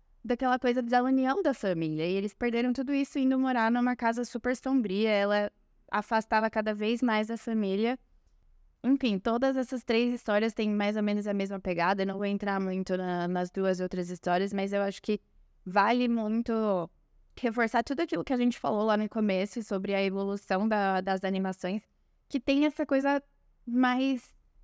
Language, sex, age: Portuguese, female, 10-29